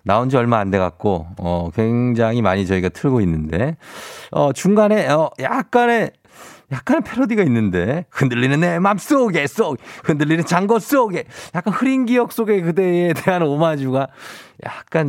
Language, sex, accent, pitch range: Korean, male, native, 95-150 Hz